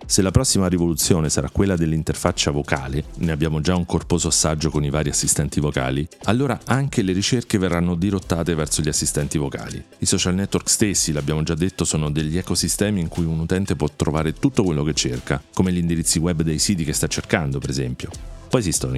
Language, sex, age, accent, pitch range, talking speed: Italian, male, 40-59, native, 75-90 Hz, 195 wpm